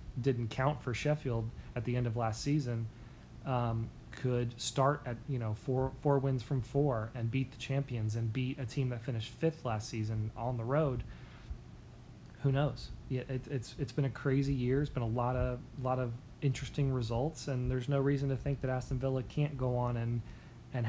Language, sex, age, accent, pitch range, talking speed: English, male, 30-49, American, 115-130 Hz, 205 wpm